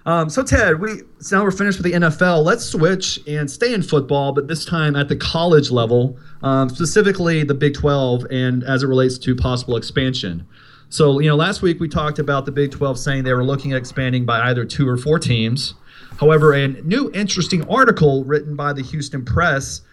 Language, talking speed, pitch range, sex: English, 210 wpm, 125-150 Hz, male